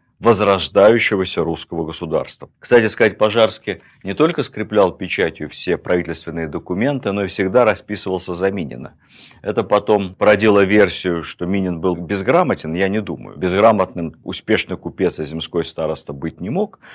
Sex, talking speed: male, 140 wpm